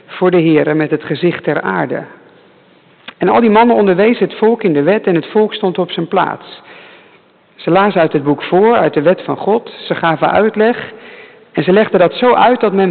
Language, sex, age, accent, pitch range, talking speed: English, male, 50-69, Dutch, 175-235 Hz, 220 wpm